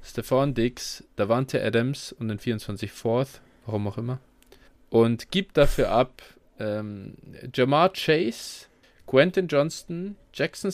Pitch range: 115-135 Hz